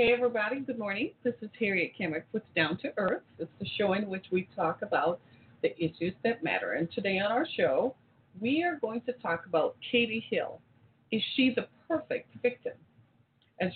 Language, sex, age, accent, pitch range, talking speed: English, female, 40-59, American, 165-225 Hz, 190 wpm